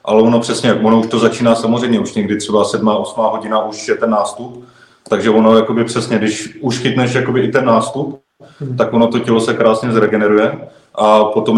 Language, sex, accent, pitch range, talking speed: Czech, male, native, 110-115 Hz, 190 wpm